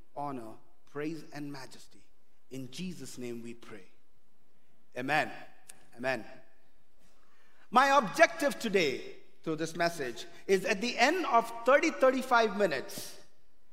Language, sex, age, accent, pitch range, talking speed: English, male, 50-69, Indian, 170-260 Hz, 105 wpm